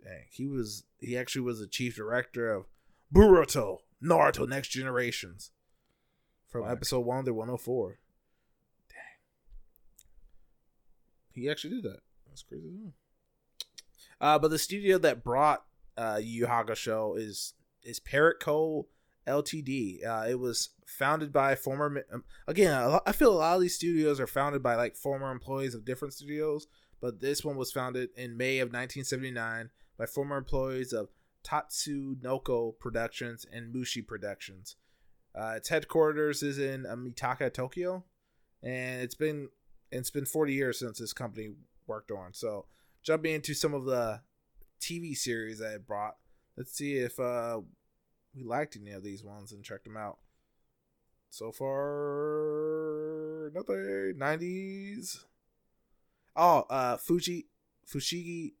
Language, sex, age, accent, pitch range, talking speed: English, male, 20-39, American, 120-150 Hz, 135 wpm